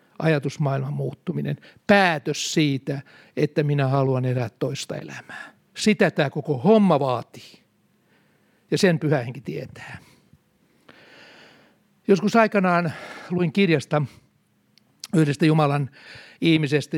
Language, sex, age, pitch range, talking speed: Finnish, male, 60-79, 145-185 Hz, 95 wpm